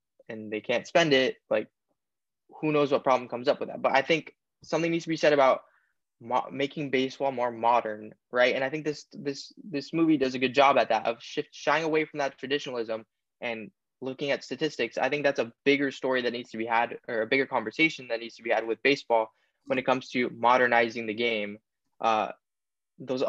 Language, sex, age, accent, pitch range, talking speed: English, male, 10-29, American, 115-145 Hz, 210 wpm